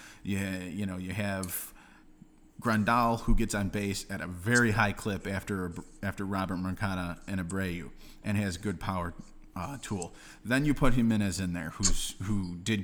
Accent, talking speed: American, 175 wpm